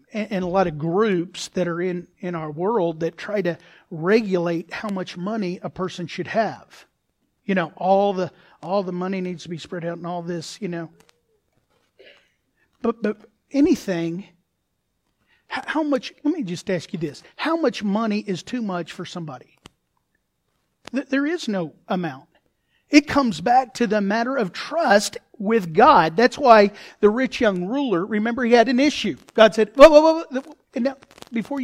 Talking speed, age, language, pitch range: 170 wpm, 40-59, English, 180-245 Hz